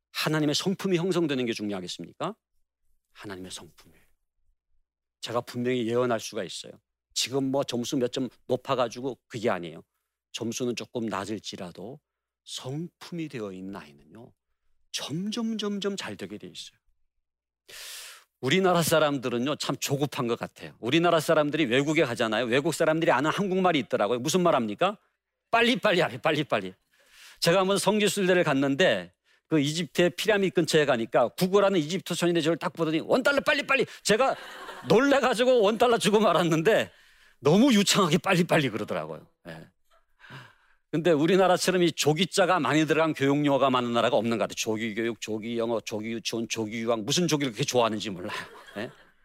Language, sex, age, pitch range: Korean, male, 40-59, 115-180 Hz